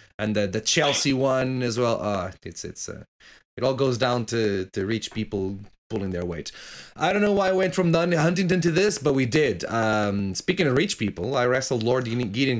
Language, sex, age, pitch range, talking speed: English, male, 30-49, 95-130 Hz, 220 wpm